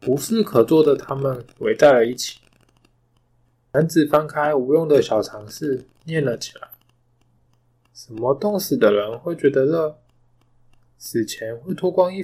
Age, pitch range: 20-39, 120-165 Hz